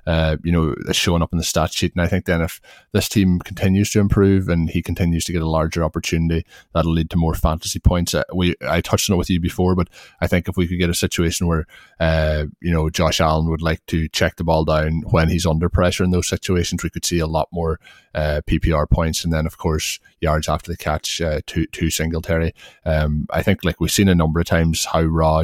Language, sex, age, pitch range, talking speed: English, male, 20-39, 80-90 Hz, 245 wpm